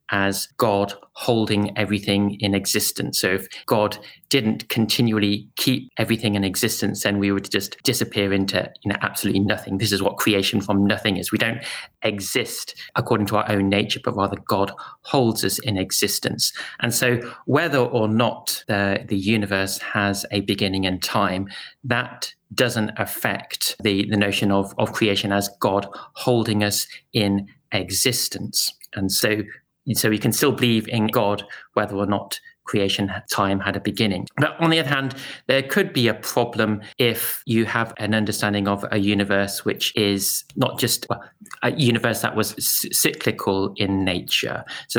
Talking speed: 165 wpm